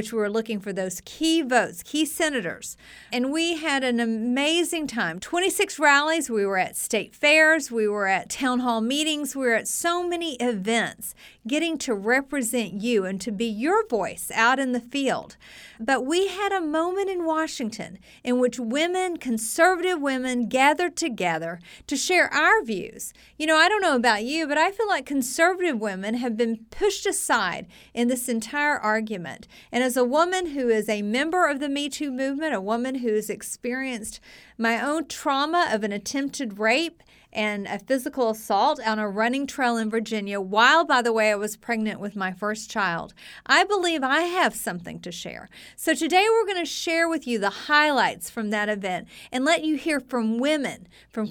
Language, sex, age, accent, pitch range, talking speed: English, female, 50-69, American, 220-310 Hz, 185 wpm